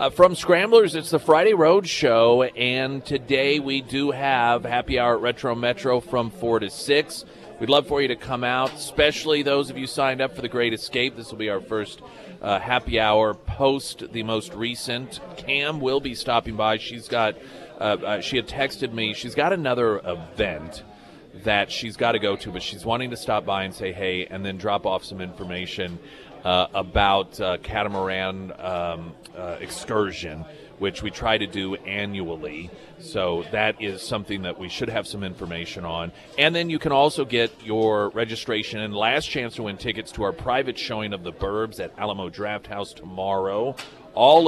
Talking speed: 190 wpm